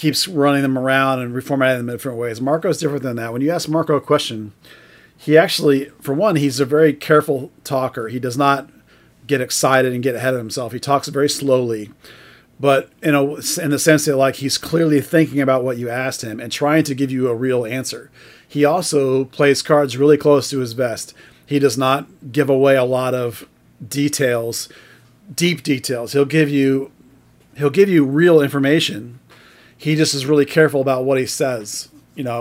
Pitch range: 125-145 Hz